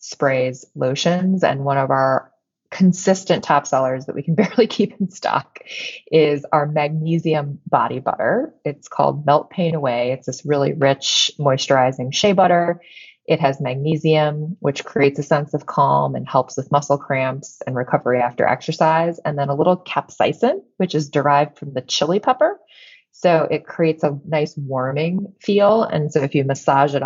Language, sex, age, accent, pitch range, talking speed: English, female, 20-39, American, 135-170 Hz, 170 wpm